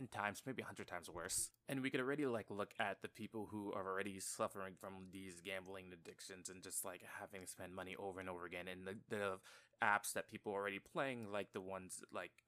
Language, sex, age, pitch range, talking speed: English, male, 20-39, 95-110 Hz, 225 wpm